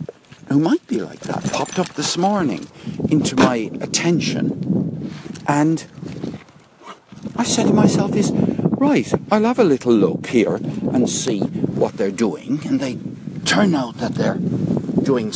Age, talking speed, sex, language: 60-79, 145 wpm, male, English